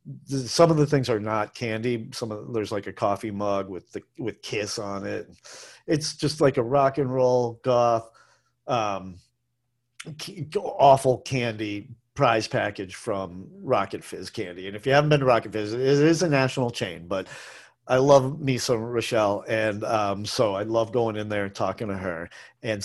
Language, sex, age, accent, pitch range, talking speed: English, male, 40-59, American, 105-135 Hz, 180 wpm